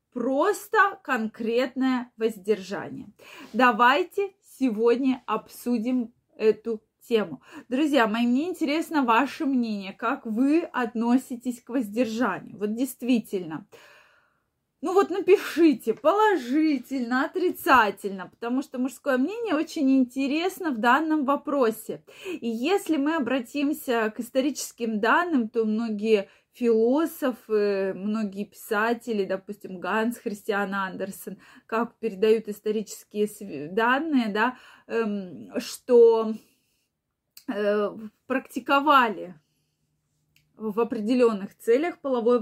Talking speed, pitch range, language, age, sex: 85 wpm, 220-270 Hz, Russian, 20-39, female